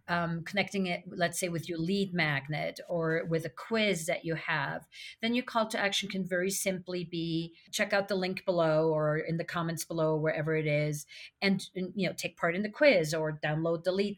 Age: 40-59